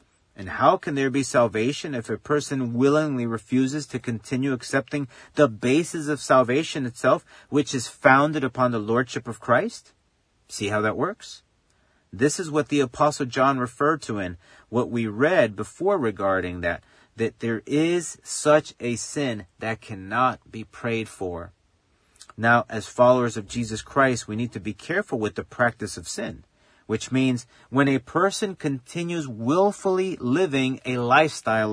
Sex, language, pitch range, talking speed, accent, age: male, English, 110-145 Hz, 155 wpm, American, 40-59